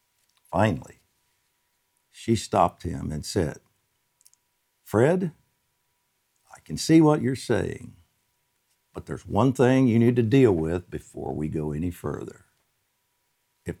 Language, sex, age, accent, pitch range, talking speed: English, male, 60-79, American, 95-135 Hz, 120 wpm